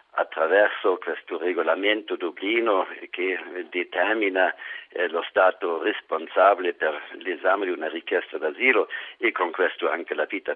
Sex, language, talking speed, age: male, Italian, 125 wpm, 50-69